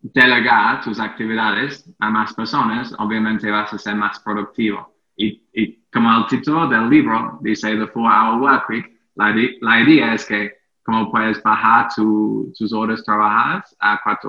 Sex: male